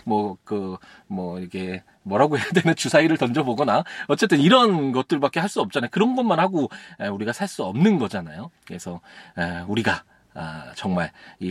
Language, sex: Korean, male